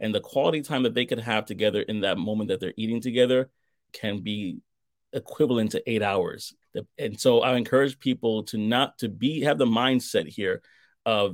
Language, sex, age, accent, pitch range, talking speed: English, male, 30-49, American, 110-140 Hz, 190 wpm